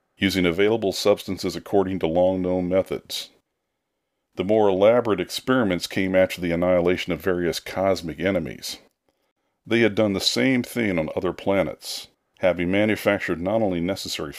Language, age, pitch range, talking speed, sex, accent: English, 50-69, 85-100 Hz, 140 wpm, male, American